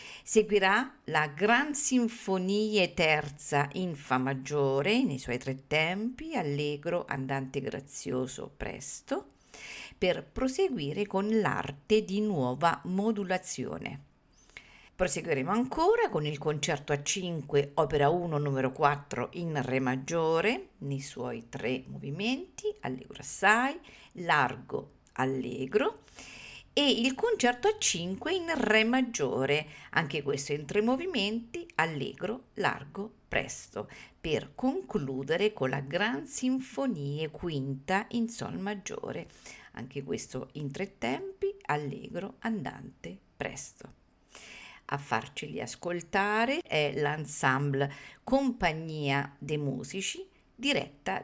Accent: native